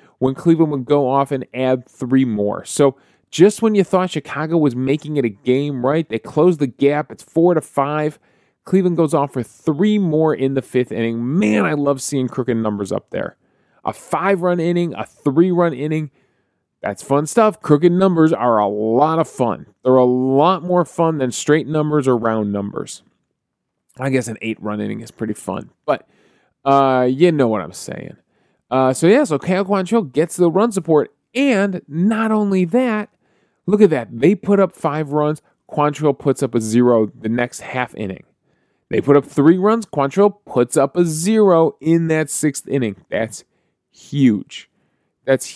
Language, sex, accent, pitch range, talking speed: English, male, American, 120-165 Hz, 180 wpm